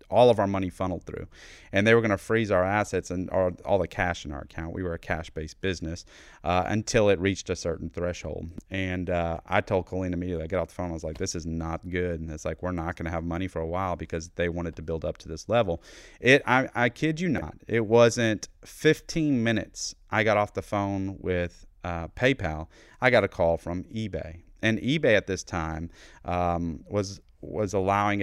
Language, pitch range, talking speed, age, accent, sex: English, 85-110 Hz, 225 wpm, 30-49, American, male